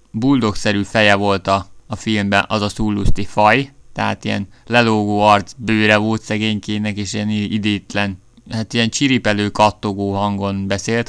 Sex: male